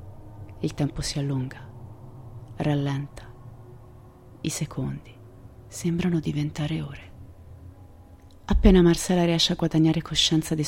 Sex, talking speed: female, 95 wpm